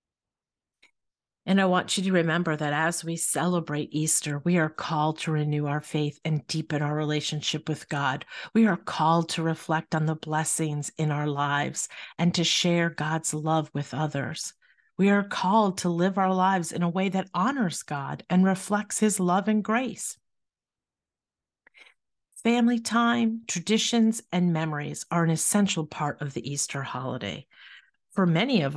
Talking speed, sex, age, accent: 160 wpm, female, 50-69, American